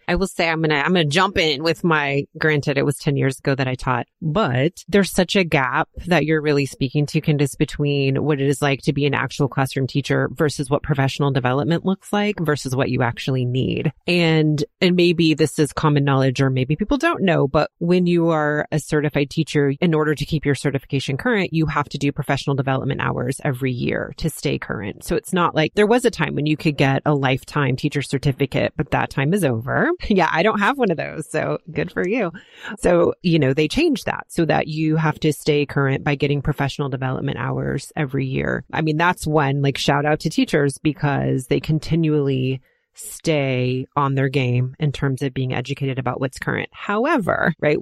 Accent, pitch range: American, 135-160 Hz